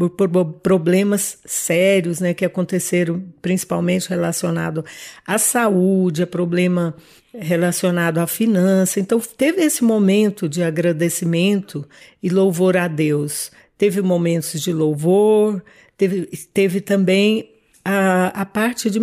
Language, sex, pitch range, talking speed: Portuguese, female, 170-195 Hz, 115 wpm